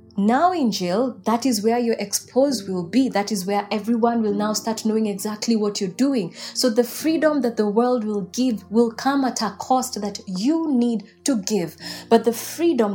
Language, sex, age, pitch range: English, female, 20-39, 205-260 Hz